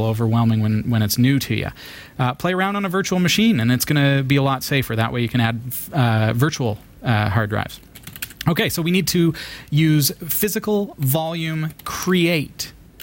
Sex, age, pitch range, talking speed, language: male, 30-49, 115-145 Hz, 190 wpm, English